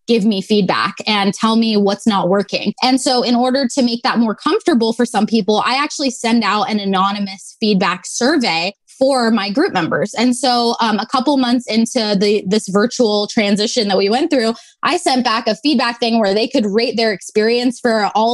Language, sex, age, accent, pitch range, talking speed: English, female, 20-39, American, 215-260 Hz, 205 wpm